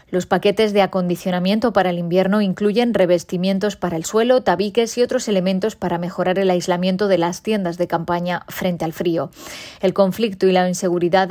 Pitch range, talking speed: 180-205 Hz, 175 wpm